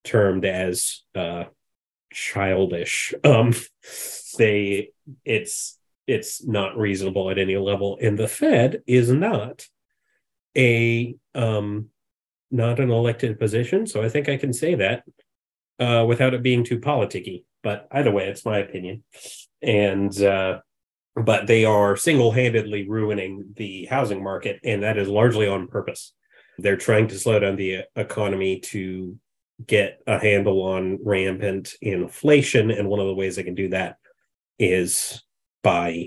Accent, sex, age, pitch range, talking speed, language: American, male, 30-49, 95-120 Hz, 140 wpm, English